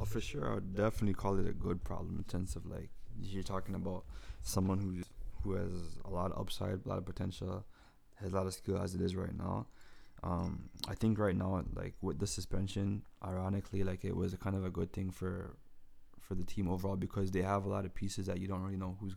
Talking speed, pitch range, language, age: 240 wpm, 90-100 Hz, English, 20-39